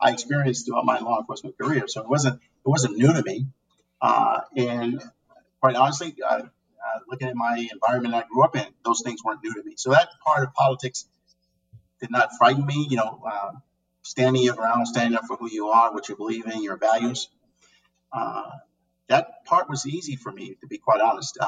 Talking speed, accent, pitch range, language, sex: 200 wpm, American, 115-155 Hz, English, male